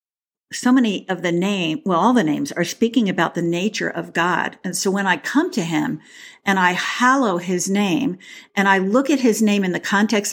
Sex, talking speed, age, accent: female, 215 wpm, 50-69, American